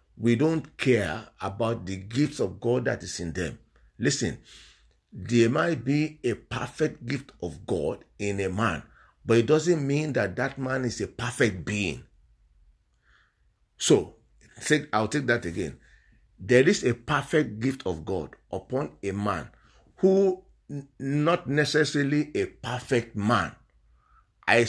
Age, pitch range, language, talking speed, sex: 50-69, 105-145 Hz, English, 140 wpm, male